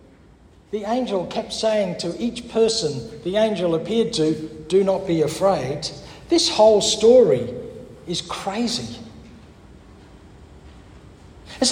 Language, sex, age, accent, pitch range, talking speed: English, male, 60-79, Australian, 155-235 Hz, 110 wpm